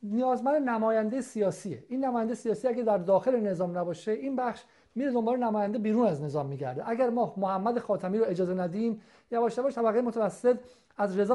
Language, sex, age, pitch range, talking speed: Persian, male, 50-69, 195-240 Hz, 180 wpm